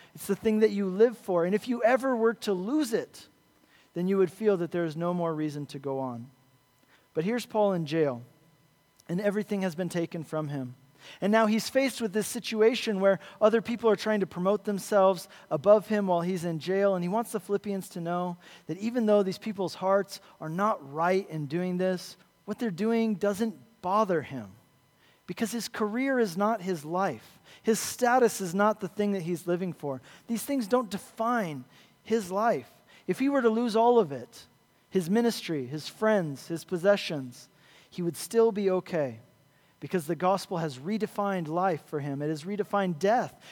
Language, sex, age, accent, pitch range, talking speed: English, male, 40-59, American, 170-220 Hz, 195 wpm